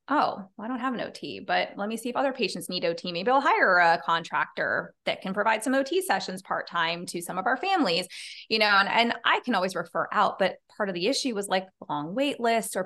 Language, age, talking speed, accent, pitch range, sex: English, 20-39, 245 wpm, American, 175-225 Hz, female